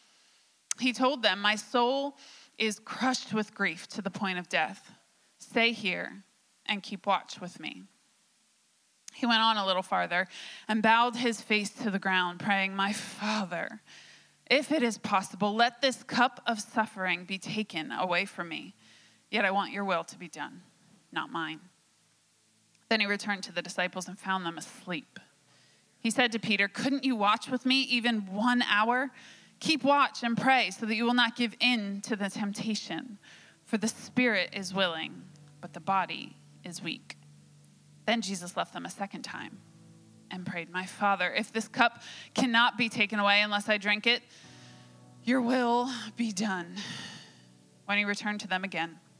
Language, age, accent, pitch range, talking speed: English, 20-39, American, 185-235 Hz, 170 wpm